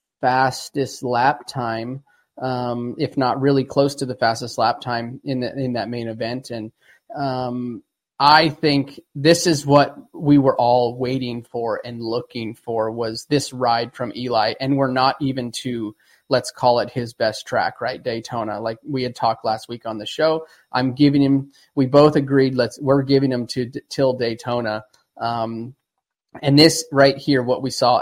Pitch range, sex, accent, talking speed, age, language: 120-140 Hz, male, American, 175 wpm, 20-39, English